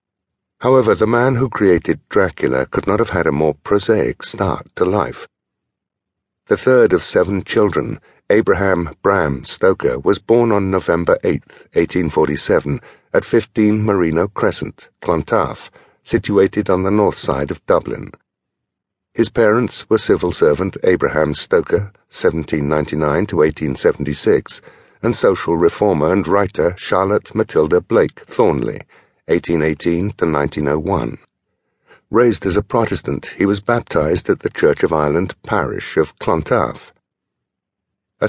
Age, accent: 60-79, British